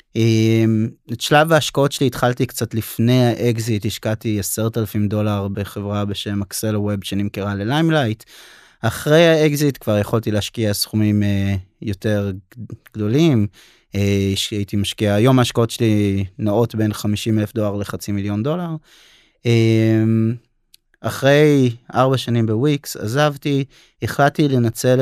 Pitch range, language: 105-135 Hz, Hebrew